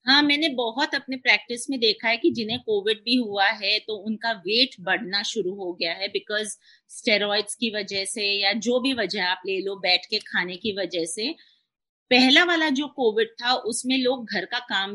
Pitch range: 200-255 Hz